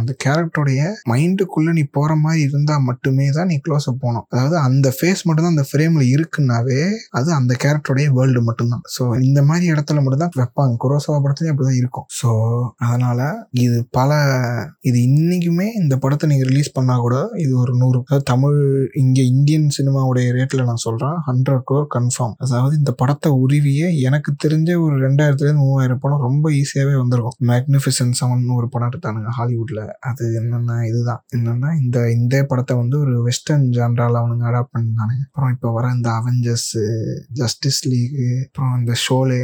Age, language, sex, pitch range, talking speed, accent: 20-39, Tamil, male, 120-145 Hz, 45 wpm, native